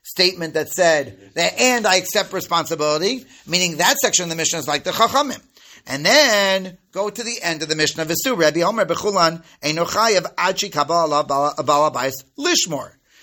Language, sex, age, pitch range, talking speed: English, male, 40-59, 160-215 Hz, 140 wpm